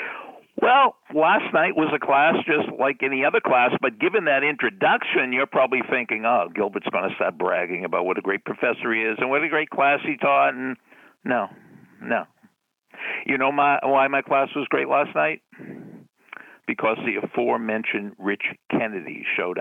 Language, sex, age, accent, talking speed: English, male, 60-79, American, 170 wpm